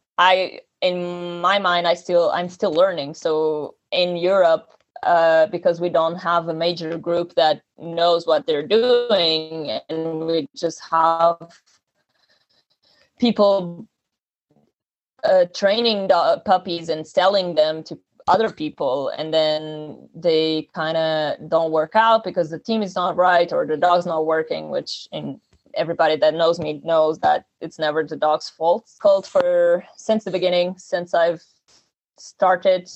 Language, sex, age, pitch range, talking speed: English, female, 20-39, 165-195 Hz, 145 wpm